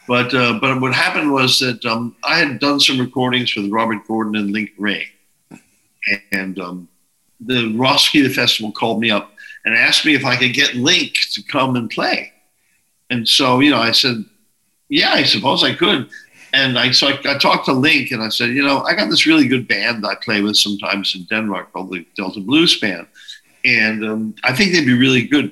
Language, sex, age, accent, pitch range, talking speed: Swedish, male, 50-69, American, 105-135 Hz, 210 wpm